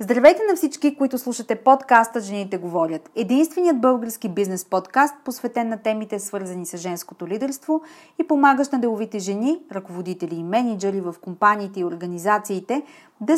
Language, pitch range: Bulgarian, 195-275 Hz